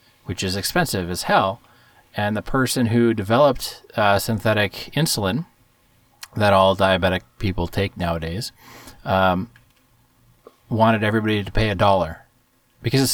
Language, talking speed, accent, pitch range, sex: English, 130 wpm, American, 100-130 Hz, male